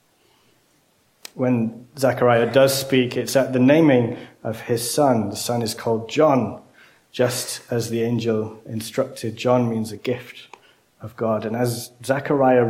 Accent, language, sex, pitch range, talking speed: British, English, male, 115-135 Hz, 140 wpm